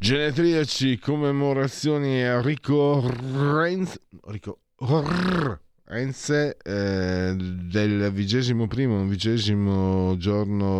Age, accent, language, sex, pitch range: 50-69, native, Italian, male, 85-120 Hz